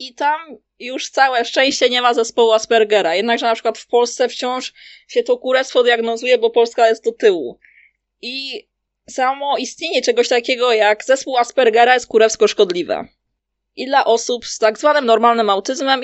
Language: Polish